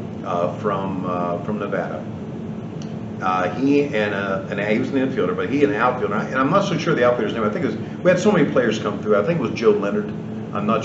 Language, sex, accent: English, male, American